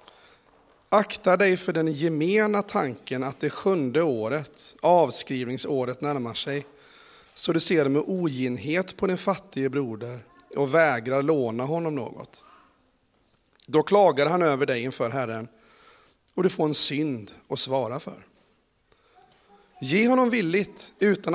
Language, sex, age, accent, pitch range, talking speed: Swedish, male, 30-49, native, 130-180 Hz, 130 wpm